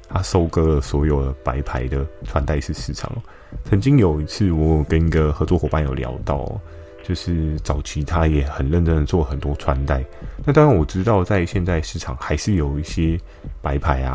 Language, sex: Chinese, male